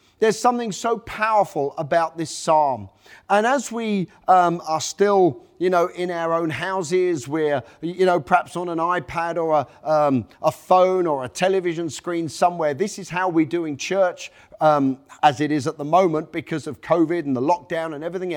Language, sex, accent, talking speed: English, male, British, 185 wpm